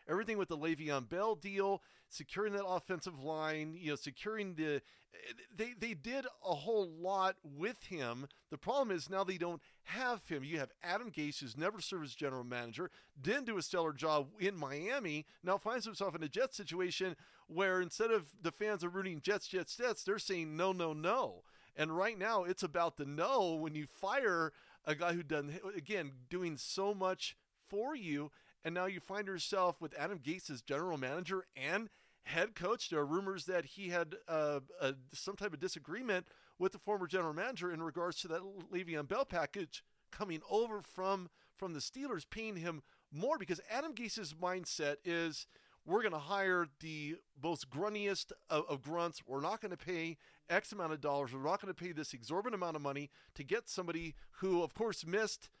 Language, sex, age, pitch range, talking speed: English, male, 40-59, 155-195 Hz, 190 wpm